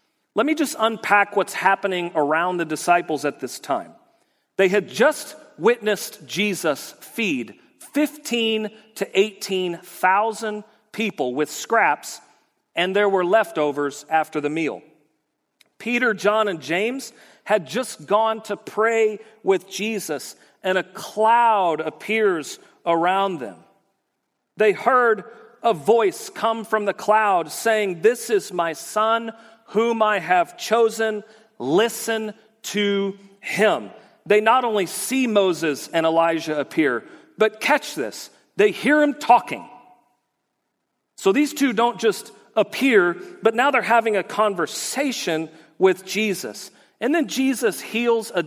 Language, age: English, 40-59